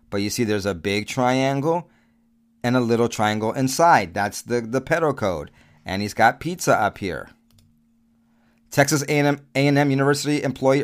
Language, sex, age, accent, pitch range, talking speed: English, male, 30-49, American, 115-145 Hz, 145 wpm